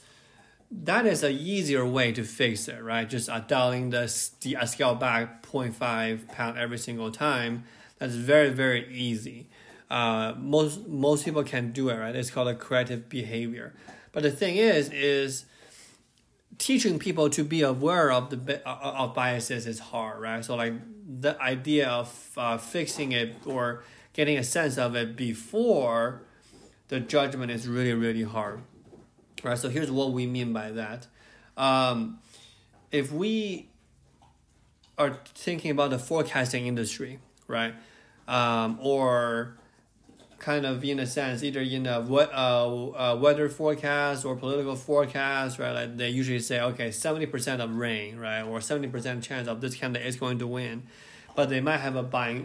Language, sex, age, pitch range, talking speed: English, male, 20-39, 115-140 Hz, 160 wpm